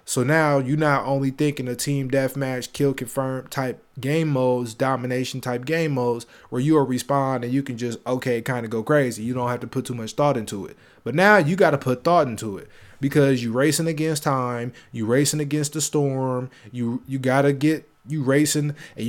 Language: English